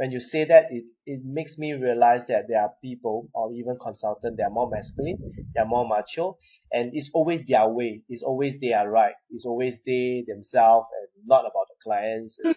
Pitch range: 115-150 Hz